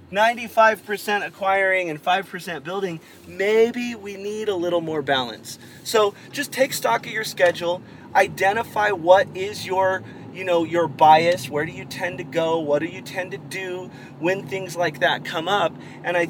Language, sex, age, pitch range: English, male, 30-49, 160-200 Hz